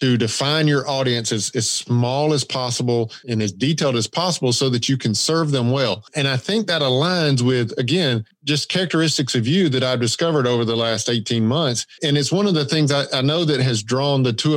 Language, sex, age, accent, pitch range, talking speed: English, male, 40-59, American, 125-155 Hz, 225 wpm